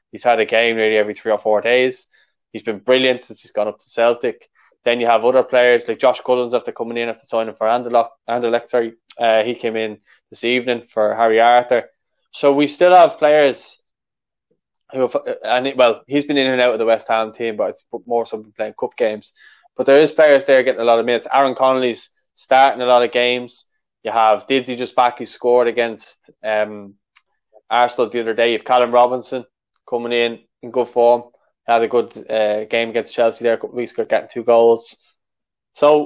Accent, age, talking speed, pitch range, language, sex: Irish, 20-39, 205 wpm, 115-135 Hz, English, male